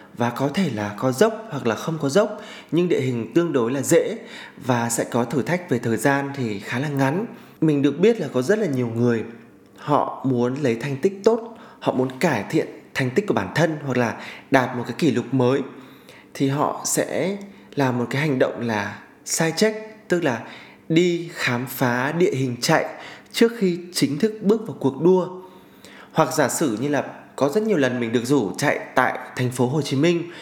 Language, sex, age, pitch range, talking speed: Vietnamese, male, 20-39, 125-180 Hz, 215 wpm